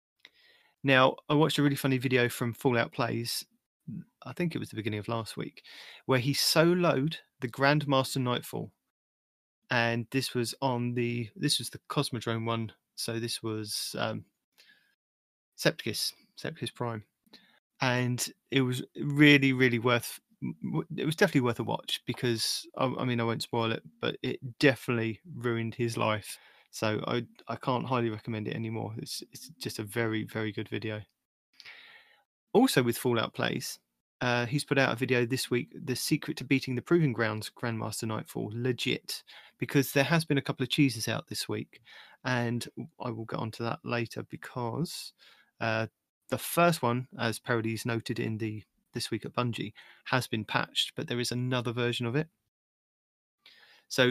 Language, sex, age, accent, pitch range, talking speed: English, male, 30-49, British, 115-140 Hz, 165 wpm